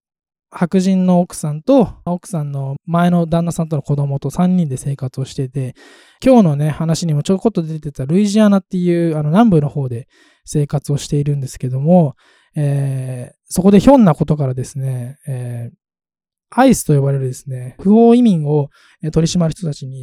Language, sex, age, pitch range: Japanese, male, 20-39, 140-195 Hz